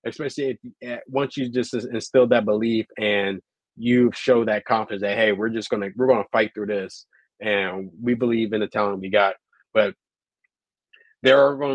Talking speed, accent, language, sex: 190 wpm, American, English, male